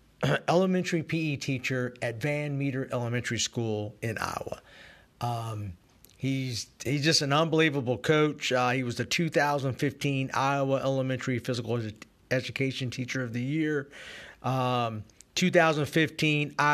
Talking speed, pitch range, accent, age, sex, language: 120 wpm, 125-145 Hz, American, 50-69, male, English